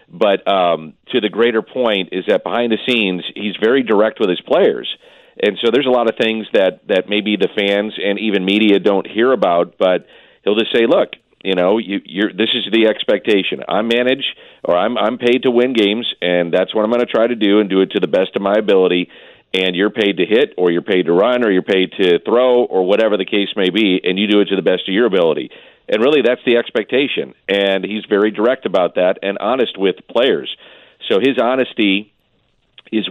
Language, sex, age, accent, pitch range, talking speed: English, male, 40-59, American, 95-120 Hz, 225 wpm